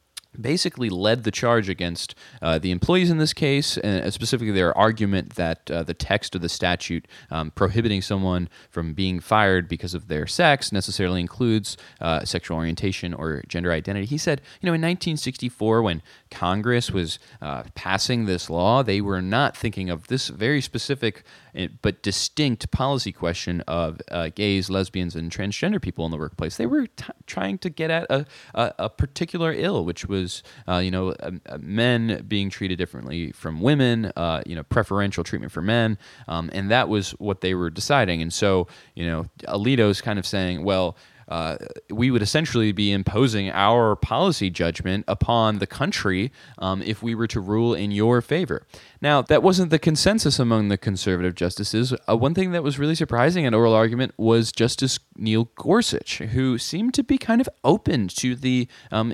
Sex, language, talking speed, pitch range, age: male, English, 180 wpm, 90-125 Hz, 20-39